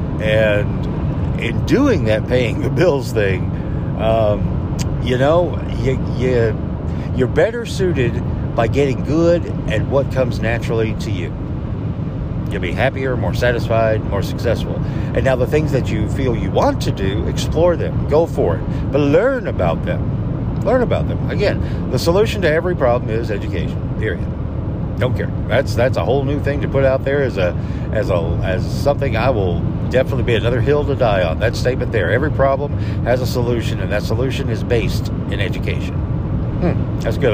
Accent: American